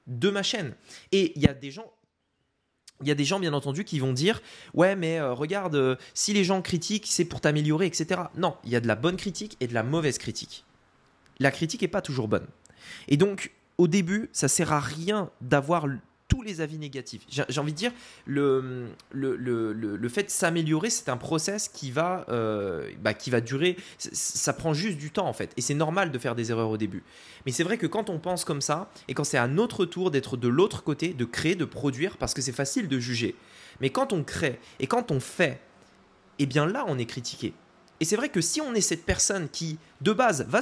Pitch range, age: 135-190 Hz, 20-39